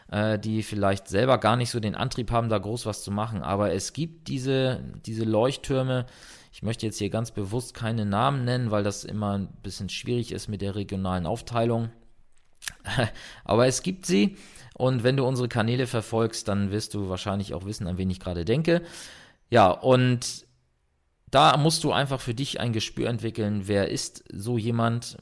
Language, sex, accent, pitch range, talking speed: German, male, German, 95-120 Hz, 180 wpm